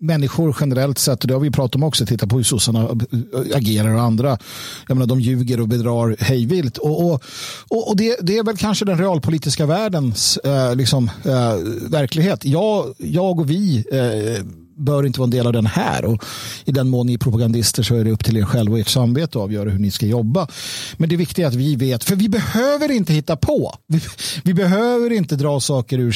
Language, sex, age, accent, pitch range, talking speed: Swedish, male, 50-69, native, 120-175 Hz, 220 wpm